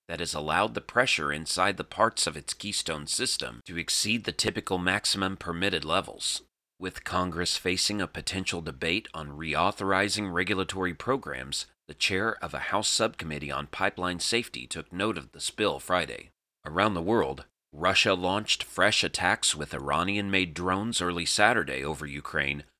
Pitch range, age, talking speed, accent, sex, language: 75-95 Hz, 30-49, 155 wpm, American, male, English